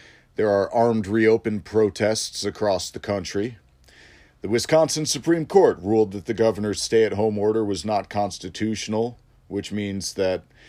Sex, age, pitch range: male, 40-59, 95-120 Hz